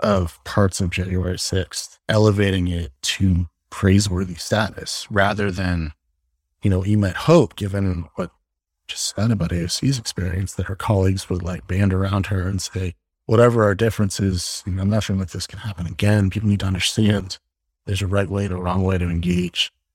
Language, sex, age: English, male, 30-49